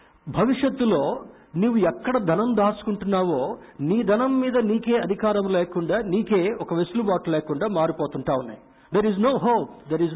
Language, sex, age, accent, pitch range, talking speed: Telugu, male, 50-69, native, 155-205 Hz, 135 wpm